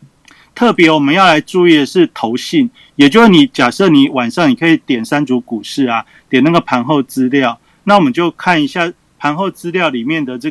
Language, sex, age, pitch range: Chinese, male, 30-49, 140-230 Hz